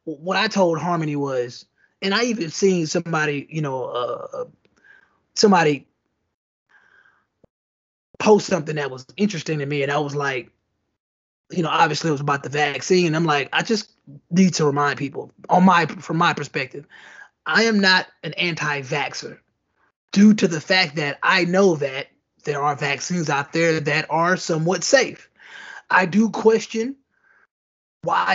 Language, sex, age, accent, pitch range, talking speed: English, male, 20-39, American, 155-215 Hz, 155 wpm